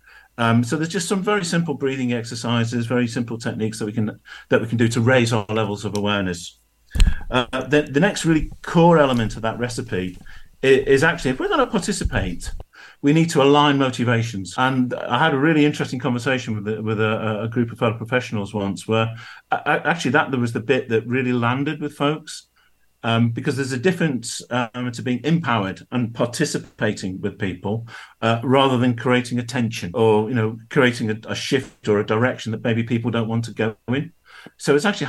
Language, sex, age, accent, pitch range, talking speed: English, male, 50-69, British, 110-135 Hz, 195 wpm